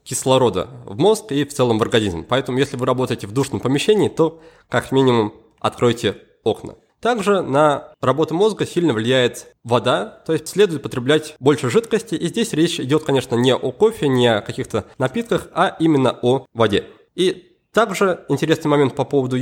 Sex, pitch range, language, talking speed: male, 120-160 Hz, Russian, 170 wpm